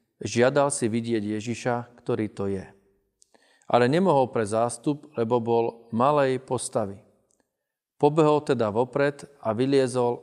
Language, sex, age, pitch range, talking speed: Slovak, male, 40-59, 115-140 Hz, 115 wpm